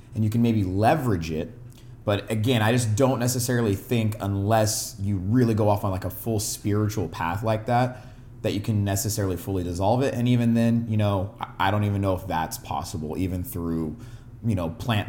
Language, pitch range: English, 95-120 Hz